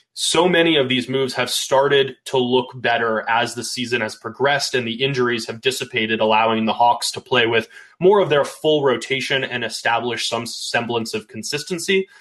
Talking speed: 180 wpm